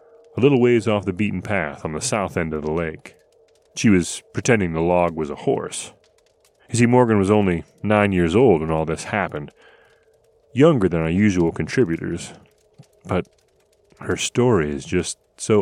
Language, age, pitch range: English, 30-49, 85-115 Hz